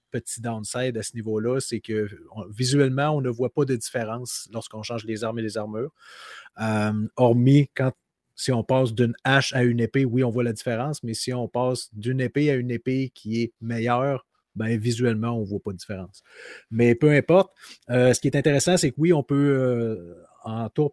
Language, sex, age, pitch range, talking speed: French, male, 30-49, 115-135 Hz, 210 wpm